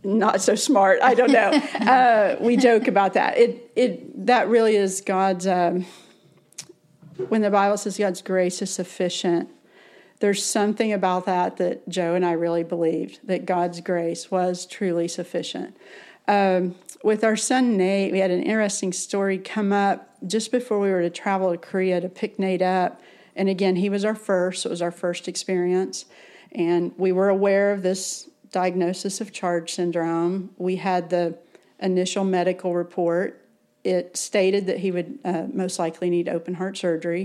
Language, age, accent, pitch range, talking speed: English, 40-59, American, 175-205 Hz, 170 wpm